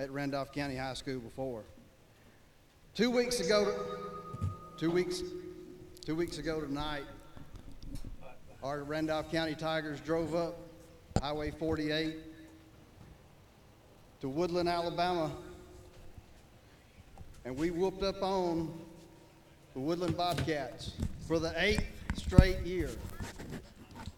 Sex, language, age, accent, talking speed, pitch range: male, English, 40-59, American, 95 wpm, 140-180 Hz